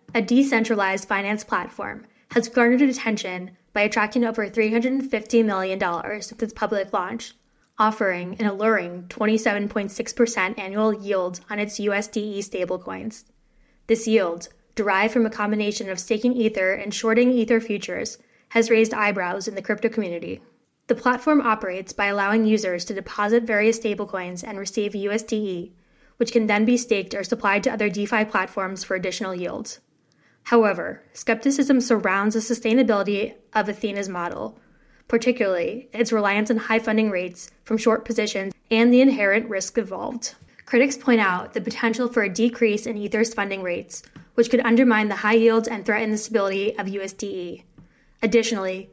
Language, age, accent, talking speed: English, 10-29, American, 150 wpm